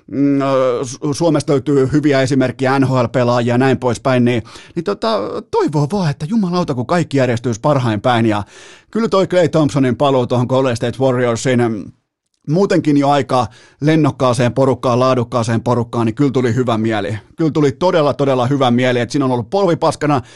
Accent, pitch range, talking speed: native, 120-150 Hz, 155 wpm